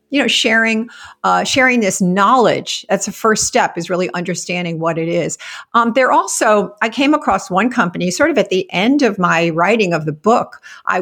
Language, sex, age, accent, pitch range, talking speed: English, female, 50-69, American, 180-230 Hz, 200 wpm